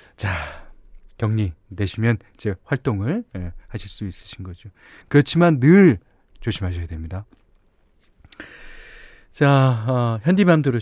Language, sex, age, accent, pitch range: Korean, male, 40-59, native, 95-145 Hz